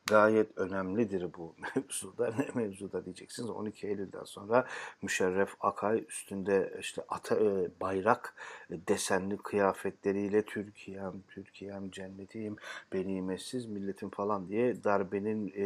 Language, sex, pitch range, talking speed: Turkish, male, 95-105 Hz, 100 wpm